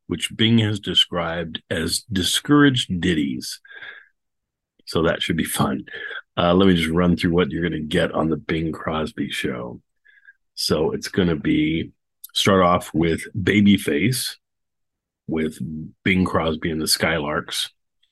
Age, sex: 40-59, male